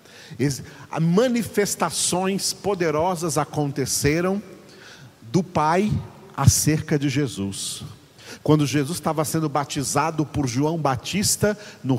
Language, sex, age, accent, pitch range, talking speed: Portuguese, male, 50-69, Brazilian, 130-160 Hz, 85 wpm